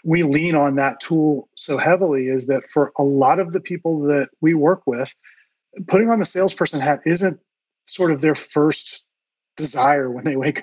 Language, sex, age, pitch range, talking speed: English, male, 30-49, 140-170 Hz, 185 wpm